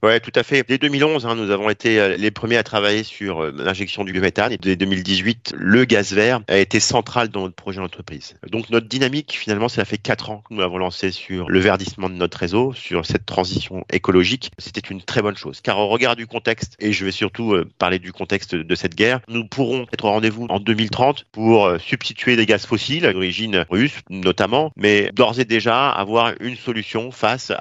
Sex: male